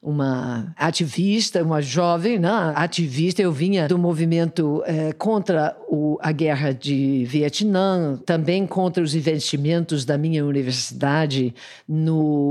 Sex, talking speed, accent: female, 120 wpm, Brazilian